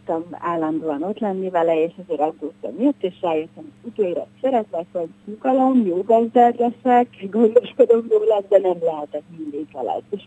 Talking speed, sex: 150 wpm, female